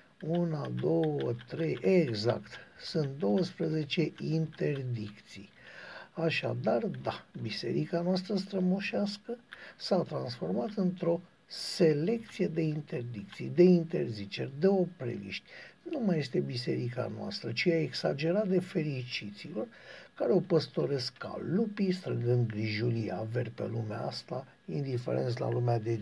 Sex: male